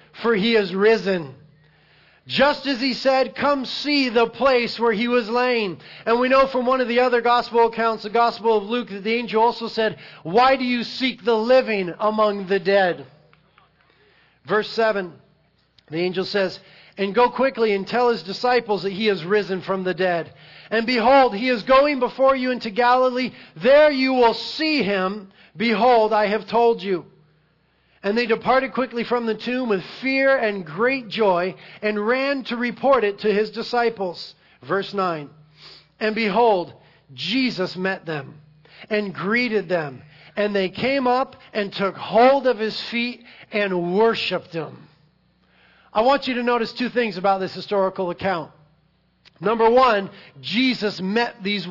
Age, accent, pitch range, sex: 40-59, American, 185-240 Hz, male